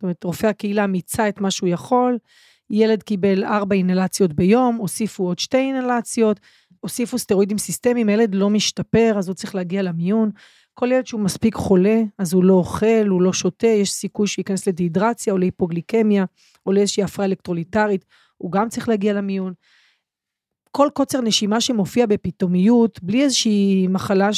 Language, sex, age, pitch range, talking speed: Hebrew, female, 30-49, 185-215 Hz, 160 wpm